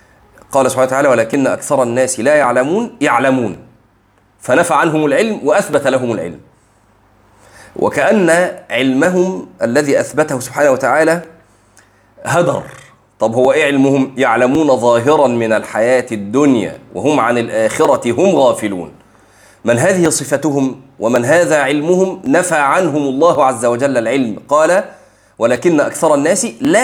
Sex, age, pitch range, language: male, 30-49, 105-145 Hz, Arabic